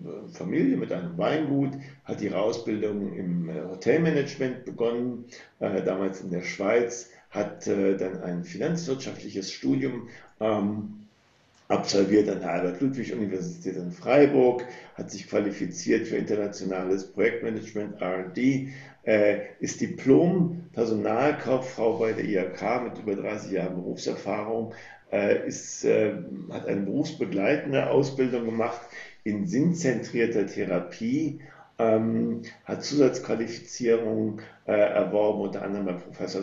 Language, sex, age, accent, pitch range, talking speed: German, male, 50-69, German, 95-125 Hz, 110 wpm